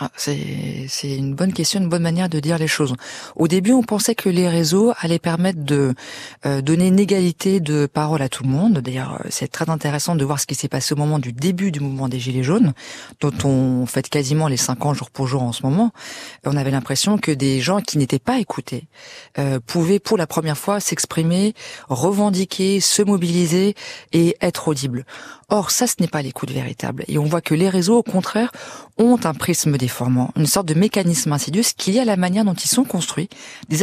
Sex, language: female, French